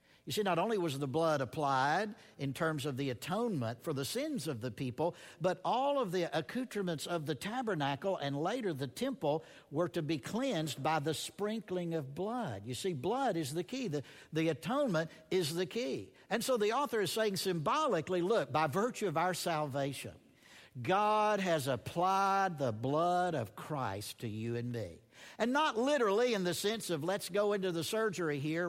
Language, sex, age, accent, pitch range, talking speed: English, male, 60-79, American, 155-205 Hz, 185 wpm